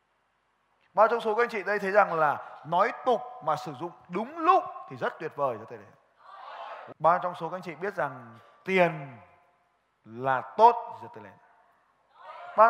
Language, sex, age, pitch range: Vietnamese, male, 20-39, 135-210 Hz